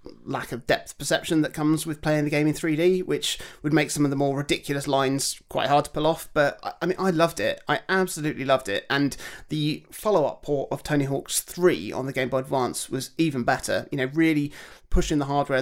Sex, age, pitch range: male, 30-49, 135-160 Hz